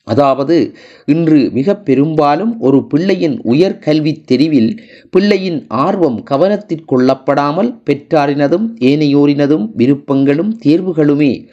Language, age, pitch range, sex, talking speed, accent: Tamil, 30-49, 140-215 Hz, male, 80 wpm, native